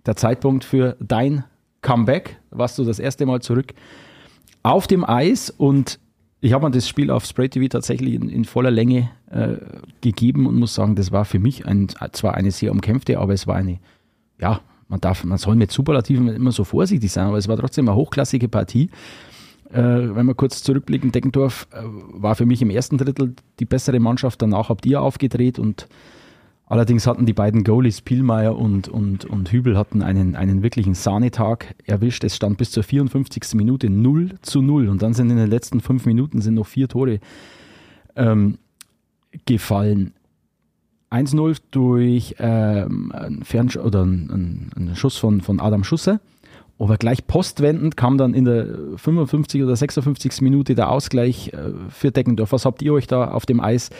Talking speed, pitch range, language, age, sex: 180 wpm, 105-130 Hz, German, 30-49, male